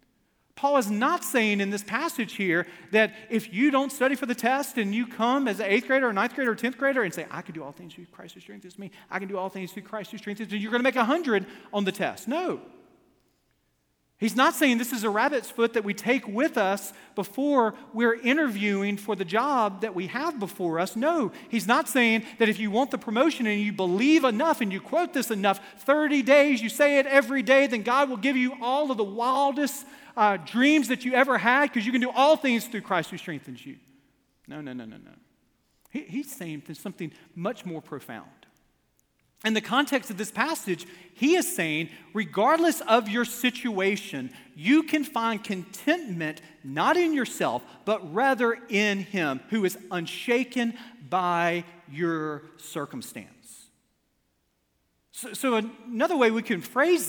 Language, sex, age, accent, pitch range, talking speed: English, male, 40-59, American, 185-265 Hz, 195 wpm